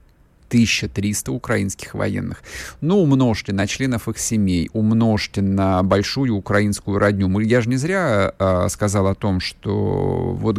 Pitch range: 90-115 Hz